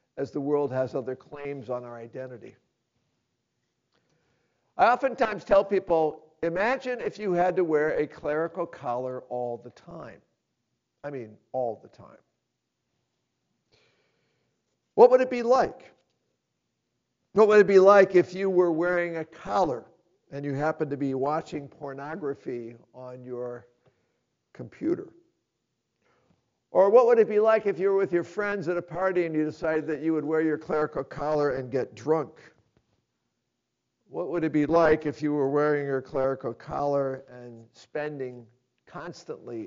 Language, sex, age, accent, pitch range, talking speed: English, male, 50-69, American, 130-175 Hz, 150 wpm